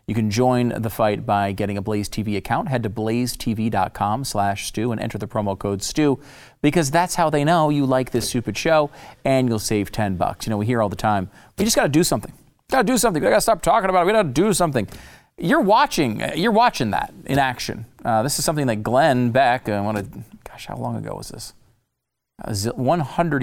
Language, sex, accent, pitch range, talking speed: English, male, American, 105-145 Hz, 230 wpm